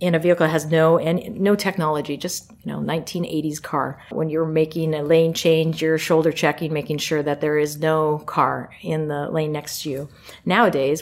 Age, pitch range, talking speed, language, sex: 40-59, 150-170 Hz, 200 wpm, English, female